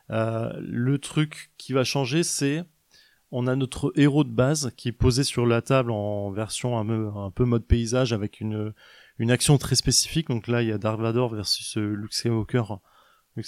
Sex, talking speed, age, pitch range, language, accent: male, 195 wpm, 20-39, 110-135 Hz, French, French